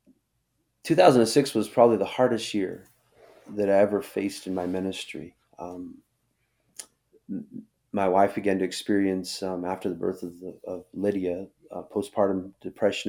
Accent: American